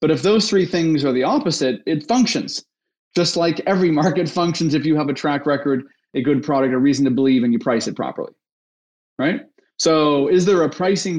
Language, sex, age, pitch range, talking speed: English, male, 30-49, 135-170 Hz, 210 wpm